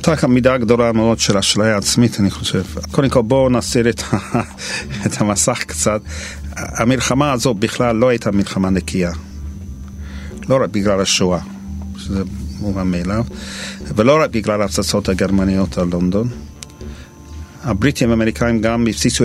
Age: 50-69